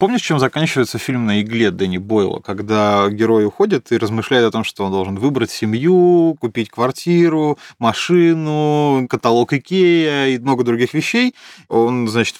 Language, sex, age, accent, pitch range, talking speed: Russian, male, 20-39, native, 110-135 Hz, 150 wpm